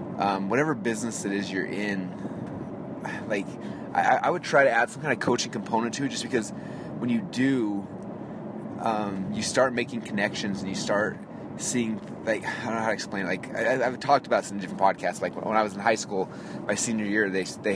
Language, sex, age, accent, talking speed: English, male, 20-39, American, 220 wpm